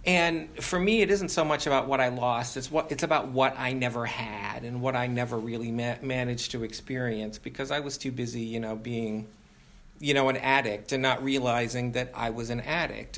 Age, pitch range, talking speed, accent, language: 40-59, 120-150 Hz, 220 wpm, American, English